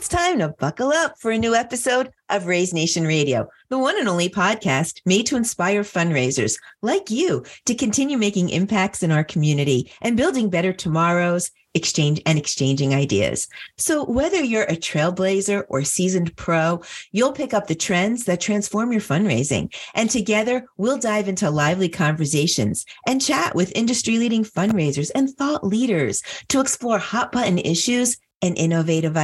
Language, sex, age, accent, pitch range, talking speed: English, female, 40-59, American, 160-230 Hz, 160 wpm